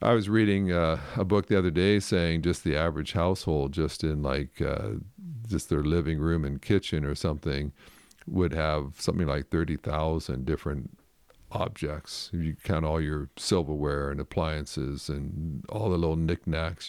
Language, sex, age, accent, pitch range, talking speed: English, male, 50-69, American, 80-100 Hz, 165 wpm